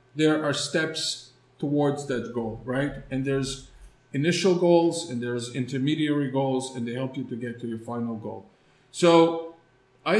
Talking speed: 160 wpm